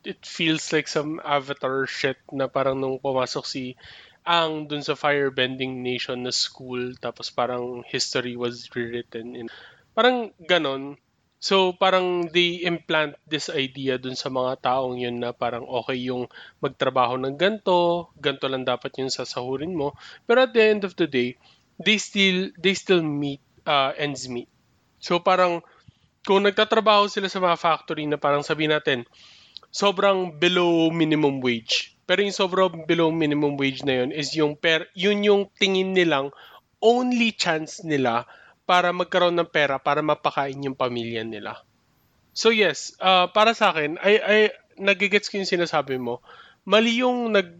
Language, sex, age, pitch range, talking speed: Filipino, male, 20-39, 130-185 Hz, 155 wpm